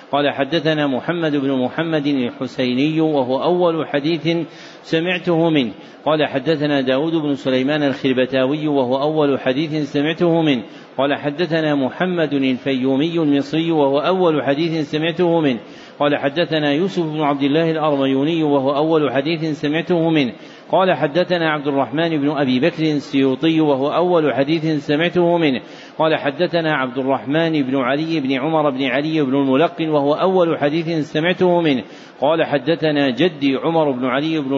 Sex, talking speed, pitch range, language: male, 140 wpm, 140-165 Hz, Arabic